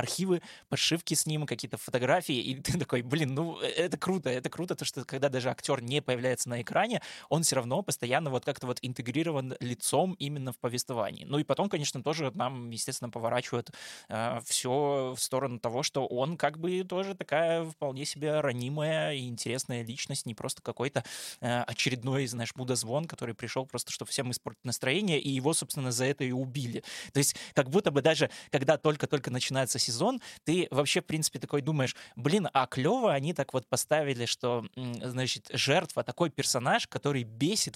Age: 20-39